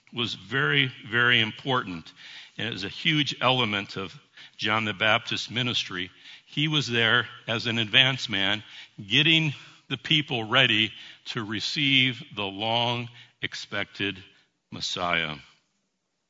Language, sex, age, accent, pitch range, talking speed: English, male, 60-79, American, 105-130 Hz, 115 wpm